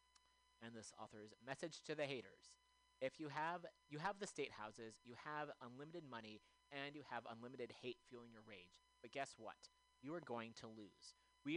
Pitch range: 115-170 Hz